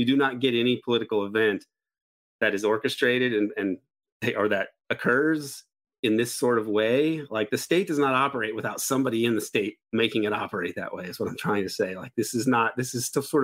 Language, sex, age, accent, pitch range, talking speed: English, male, 30-49, American, 110-140 Hz, 225 wpm